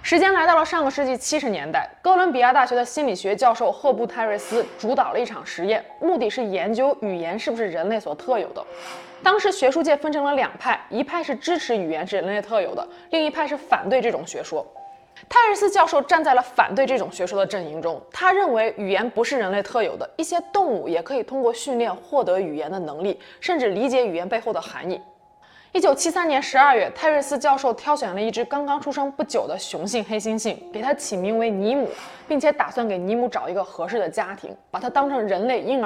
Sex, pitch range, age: female, 220-310 Hz, 20-39